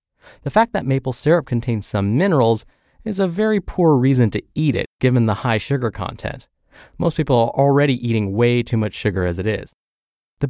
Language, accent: English, American